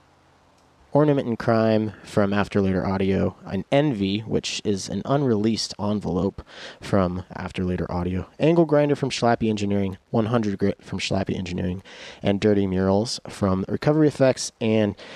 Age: 30-49